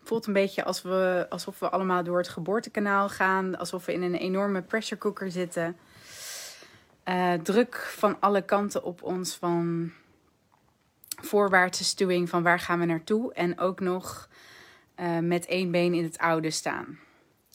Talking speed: 155 wpm